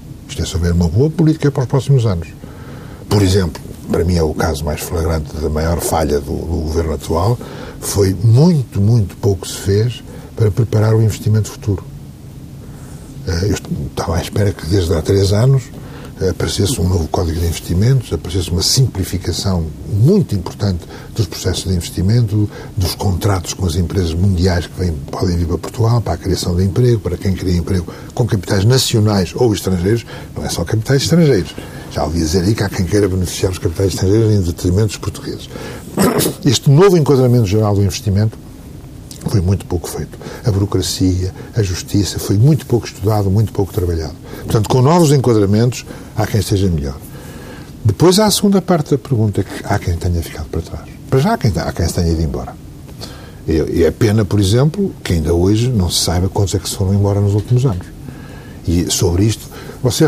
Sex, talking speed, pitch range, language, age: male, 185 wpm, 90-120 Hz, Portuguese, 60-79